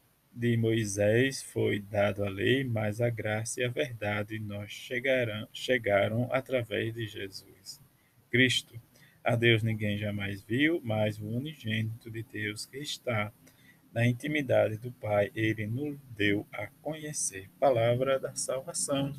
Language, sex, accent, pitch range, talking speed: Portuguese, male, Brazilian, 105-130 Hz, 130 wpm